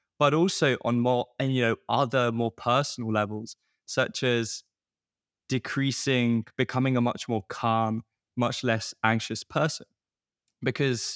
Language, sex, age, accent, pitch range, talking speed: English, male, 20-39, British, 105-125 Hz, 130 wpm